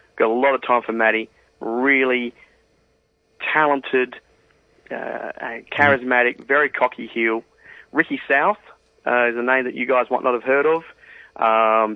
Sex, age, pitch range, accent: male, 30-49, 115-140 Hz, Australian